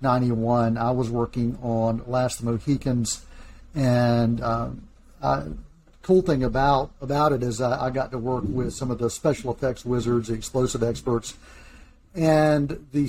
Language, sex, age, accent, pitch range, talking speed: English, male, 50-69, American, 120-150 Hz, 160 wpm